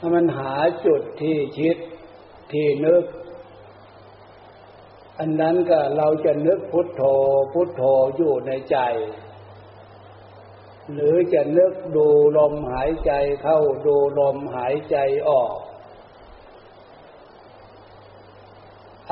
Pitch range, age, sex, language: 105-160 Hz, 60-79, male, Thai